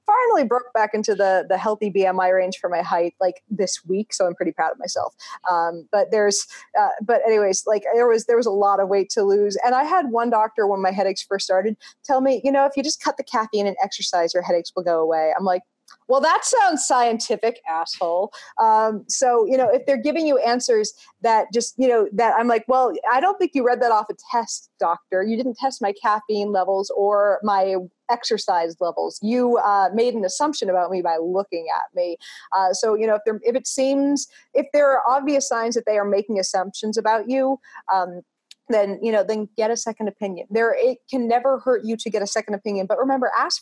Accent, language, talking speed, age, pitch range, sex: American, English, 225 wpm, 30-49, 195-260 Hz, female